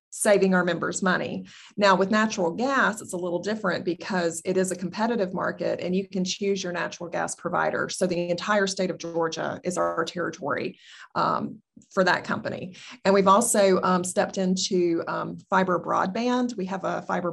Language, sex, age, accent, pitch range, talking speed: English, female, 30-49, American, 180-205 Hz, 180 wpm